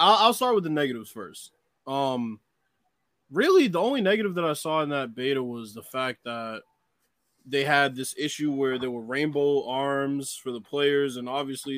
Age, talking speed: 20-39, 180 wpm